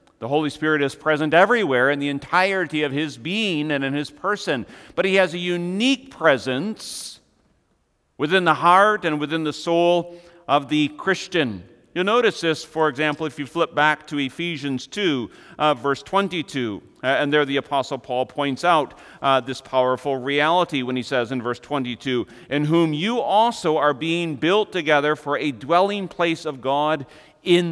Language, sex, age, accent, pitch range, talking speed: English, male, 40-59, American, 145-180 Hz, 175 wpm